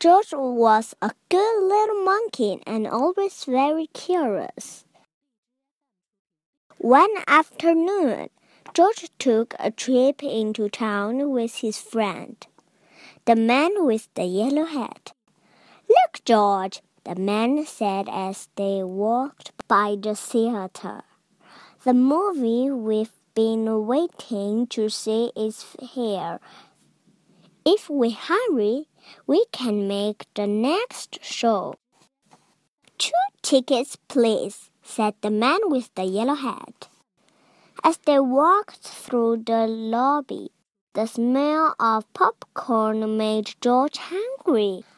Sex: male